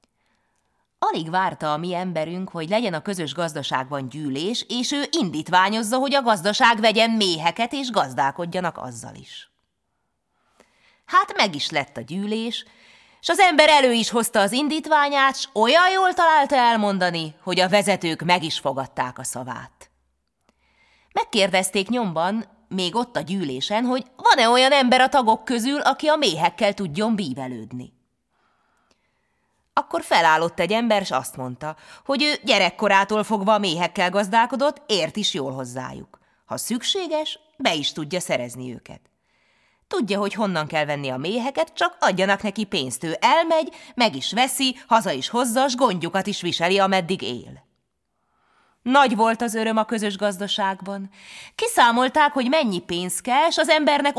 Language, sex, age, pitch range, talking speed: Hungarian, female, 30-49, 170-265 Hz, 145 wpm